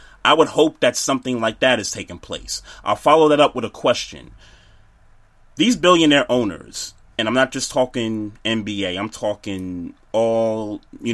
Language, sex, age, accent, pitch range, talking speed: English, male, 30-49, American, 100-130 Hz, 160 wpm